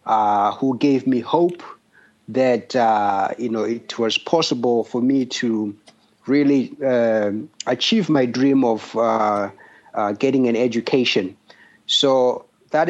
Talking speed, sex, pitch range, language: 130 wpm, male, 115-140 Hz, English